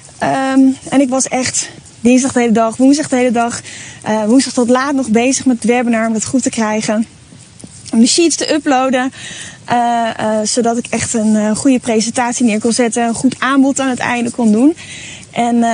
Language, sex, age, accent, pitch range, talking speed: Dutch, female, 20-39, Dutch, 215-260 Hz, 200 wpm